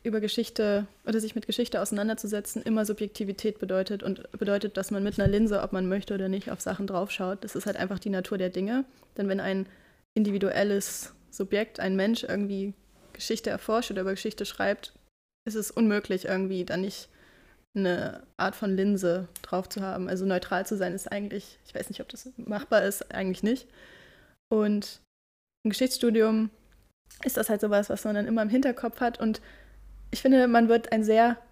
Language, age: German, 20-39